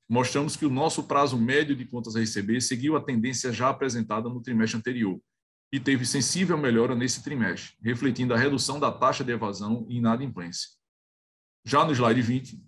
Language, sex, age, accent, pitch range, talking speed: Portuguese, male, 20-39, Brazilian, 115-140 Hz, 175 wpm